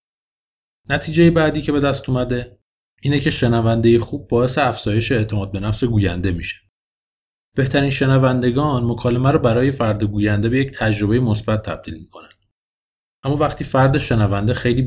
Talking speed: 140 wpm